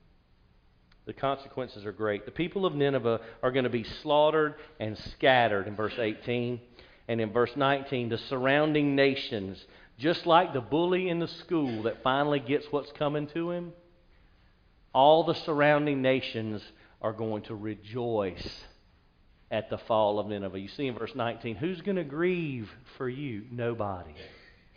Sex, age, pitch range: male, 40-59, 105-150 Hz